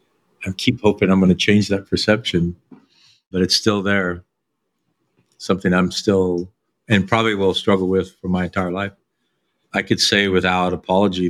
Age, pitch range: 50-69, 90-110 Hz